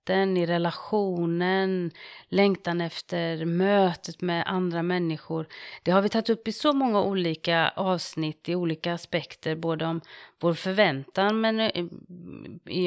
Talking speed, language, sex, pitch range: 125 wpm, English, female, 160-195 Hz